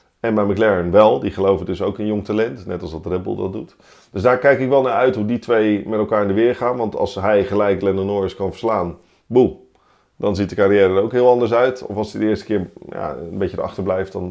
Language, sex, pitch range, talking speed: Dutch, male, 95-120 Hz, 270 wpm